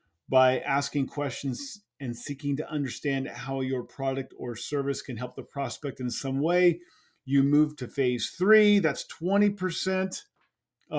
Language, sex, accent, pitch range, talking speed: English, male, American, 120-145 Hz, 140 wpm